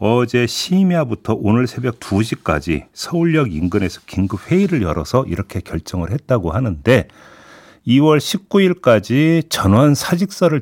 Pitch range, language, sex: 90-145 Hz, Korean, male